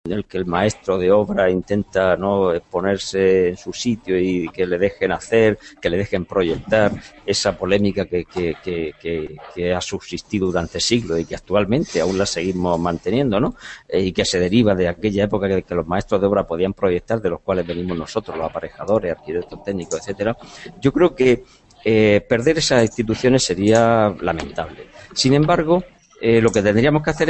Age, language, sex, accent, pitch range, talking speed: 50-69, Spanish, male, Spanish, 95-125 Hz, 180 wpm